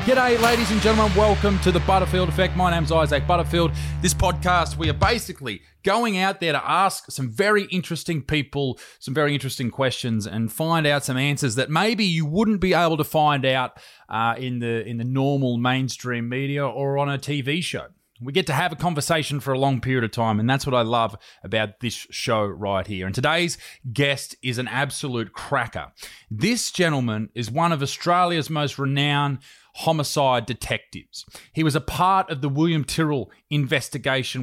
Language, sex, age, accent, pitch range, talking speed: English, male, 20-39, Australian, 120-160 Hz, 185 wpm